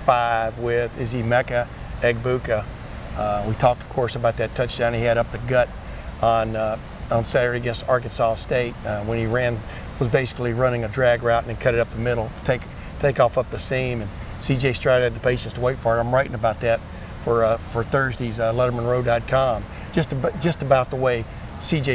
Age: 50-69